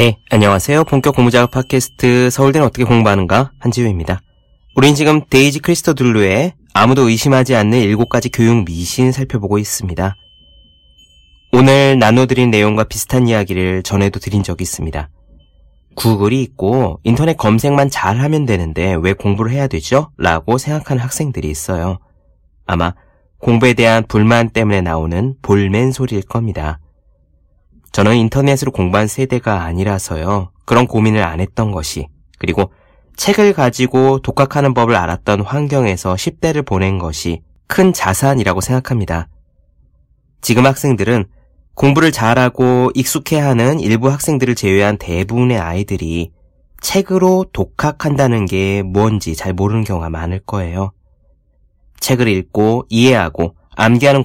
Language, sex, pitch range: Korean, male, 90-130 Hz